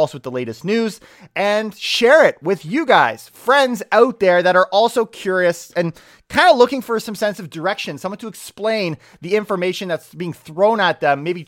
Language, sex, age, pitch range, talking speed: English, male, 30-49, 165-230 Hz, 195 wpm